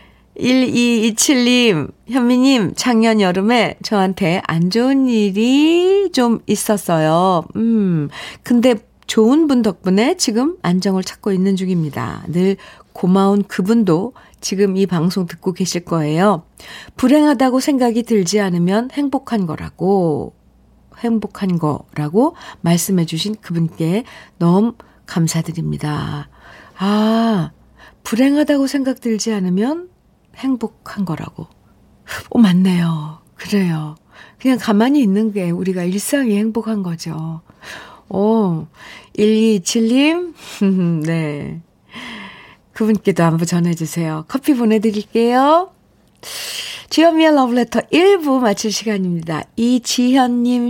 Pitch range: 180-245 Hz